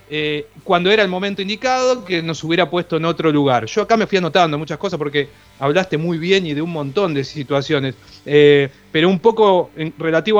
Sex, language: male, Spanish